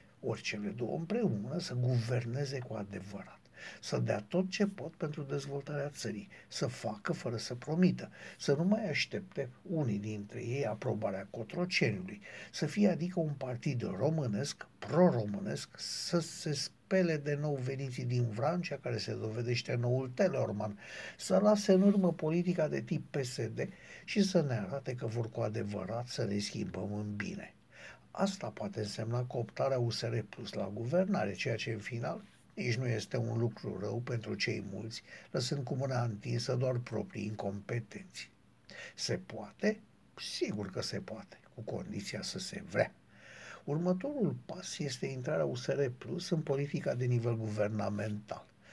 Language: Romanian